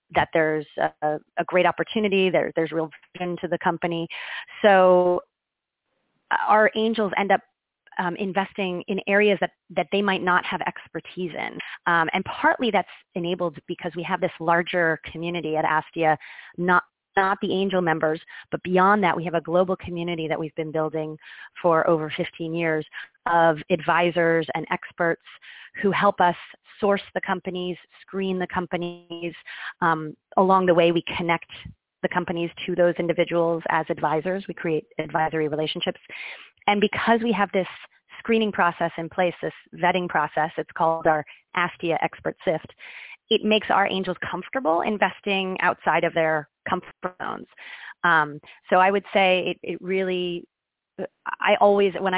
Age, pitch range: 30-49, 165-190 Hz